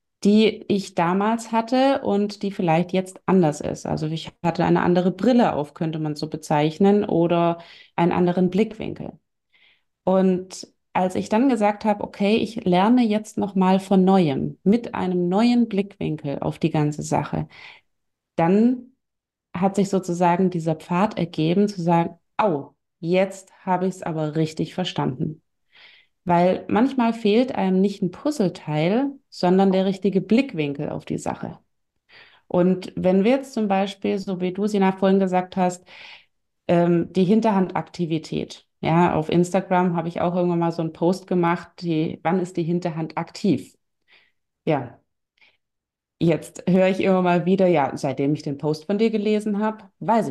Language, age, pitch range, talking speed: German, 30-49, 170-205 Hz, 155 wpm